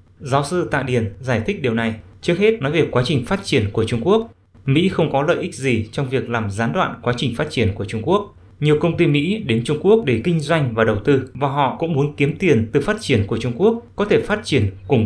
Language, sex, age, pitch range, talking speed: English, male, 20-39, 115-165 Hz, 265 wpm